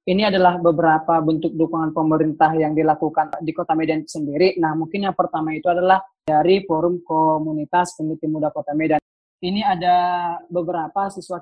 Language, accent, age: Indonesian, native, 20-39